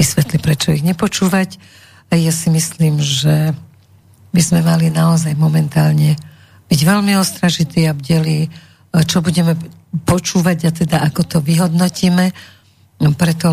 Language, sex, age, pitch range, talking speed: Slovak, female, 50-69, 155-175 Hz, 135 wpm